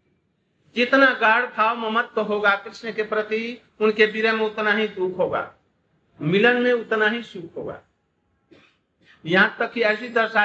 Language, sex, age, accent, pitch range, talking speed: Hindi, male, 60-79, native, 185-225 Hz, 150 wpm